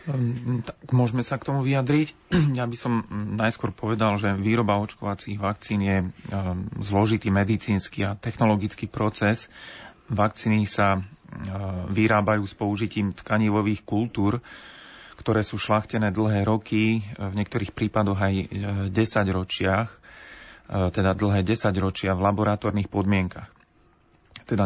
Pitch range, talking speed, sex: 95-110 Hz, 110 wpm, male